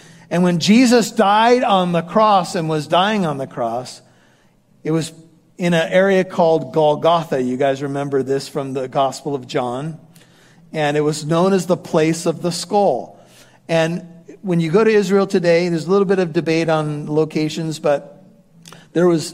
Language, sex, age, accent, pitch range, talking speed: English, male, 50-69, American, 150-185 Hz, 175 wpm